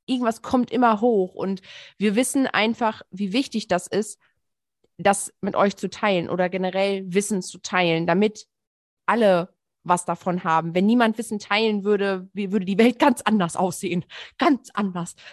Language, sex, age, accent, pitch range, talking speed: German, female, 20-39, German, 180-215 Hz, 155 wpm